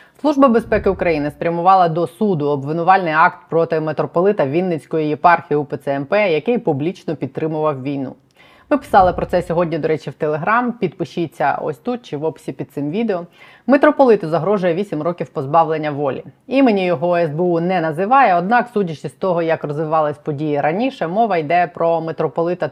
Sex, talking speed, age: female, 155 wpm, 20-39